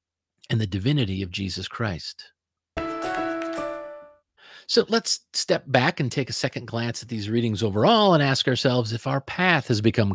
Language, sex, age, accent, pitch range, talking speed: English, male, 40-59, American, 110-160 Hz, 160 wpm